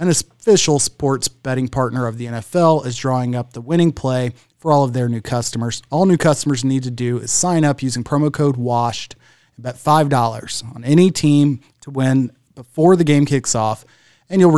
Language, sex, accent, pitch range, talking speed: English, male, American, 120-150 Hz, 200 wpm